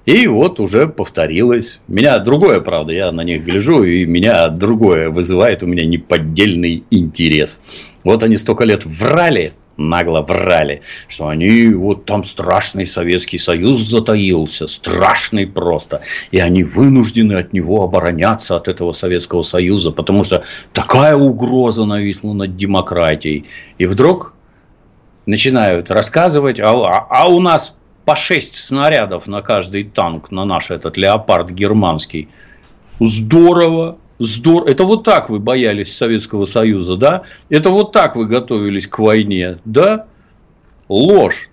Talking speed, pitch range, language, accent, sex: 135 wpm, 85-120 Hz, Russian, native, male